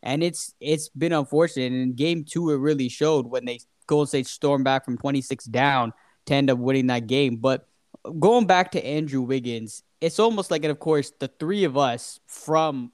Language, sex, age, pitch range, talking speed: English, male, 10-29, 140-170 Hz, 205 wpm